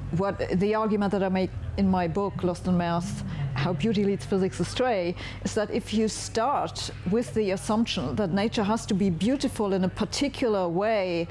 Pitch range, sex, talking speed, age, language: 165-210 Hz, female, 185 wpm, 40-59, English